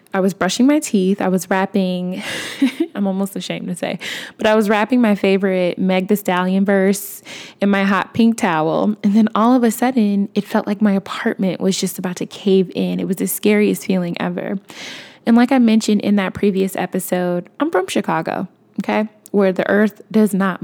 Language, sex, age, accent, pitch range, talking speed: English, female, 20-39, American, 190-225 Hz, 200 wpm